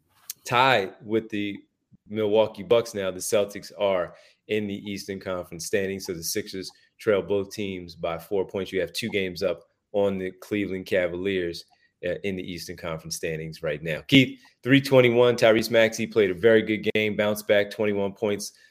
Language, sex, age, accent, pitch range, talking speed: English, male, 30-49, American, 100-120 Hz, 165 wpm